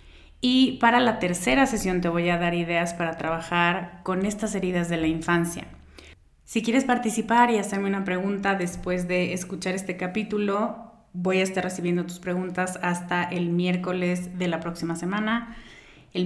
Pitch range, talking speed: 170-200 Hz, 160 wpm